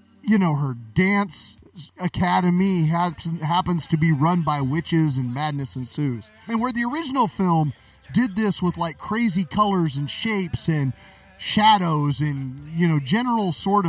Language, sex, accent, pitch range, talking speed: English, male, American, 140-200 Hz, 145 wpm